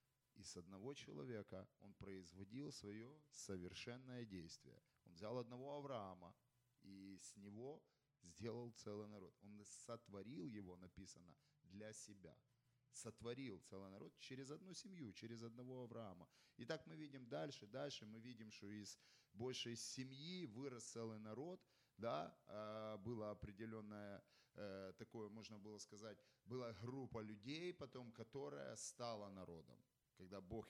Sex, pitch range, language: male, 100-130 Hz, Ukrainian